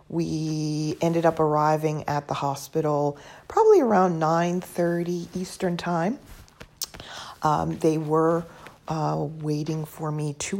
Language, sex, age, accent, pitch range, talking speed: English, female, 40-59, American, 145-175 Hz, 115 wpm